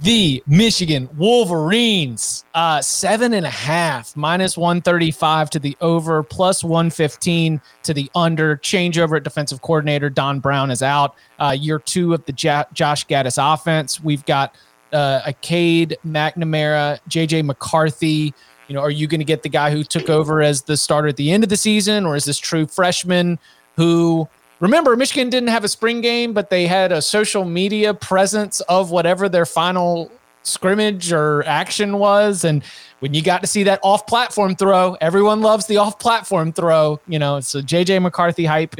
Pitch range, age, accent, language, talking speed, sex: 150-185 Hz, 30-49, American, English, 175 wpm, male